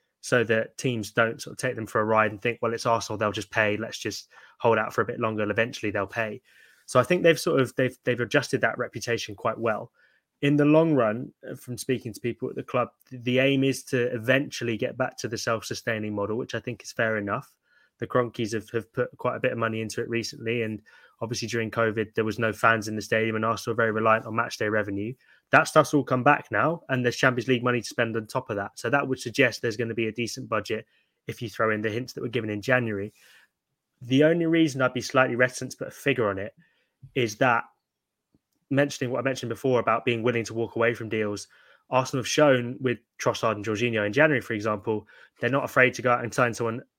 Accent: British